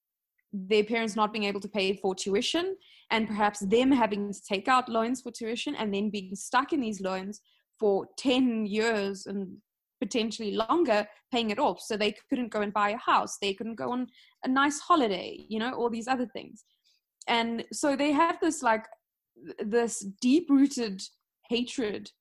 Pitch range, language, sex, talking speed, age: 210-275 Hz, English, female, 180 wpm, 20-39